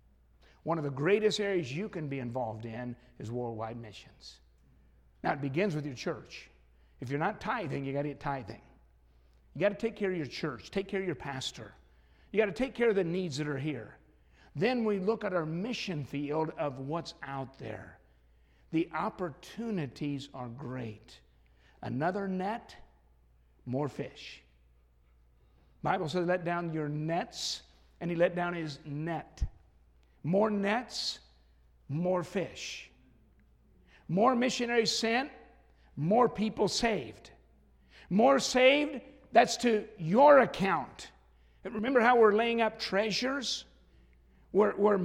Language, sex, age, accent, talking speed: English, male, 60-79, American, 145 wpm